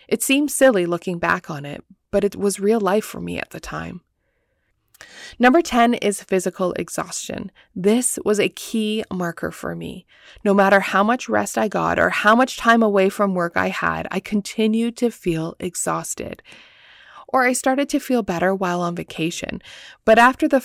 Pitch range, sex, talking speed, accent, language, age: 180-230 Hz, female, 180 wpm, American, English, 20-39